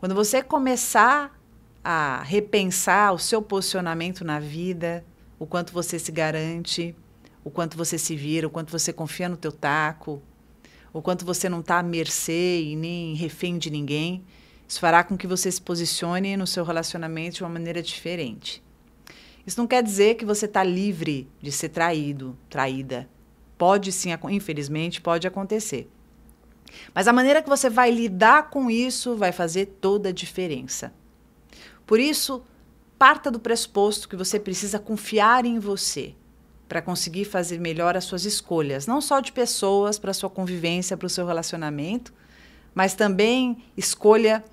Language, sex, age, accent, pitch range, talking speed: Portuguese, female, 40-59, Brazilian, 170-210 Hz, 155 wpm